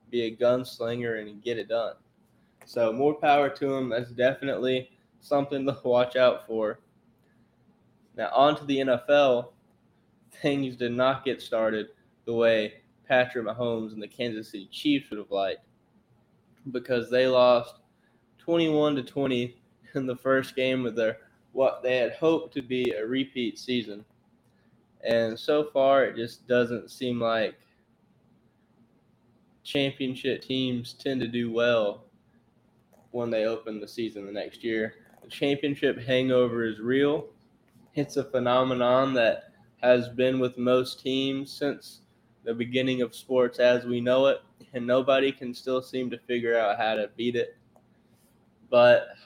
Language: English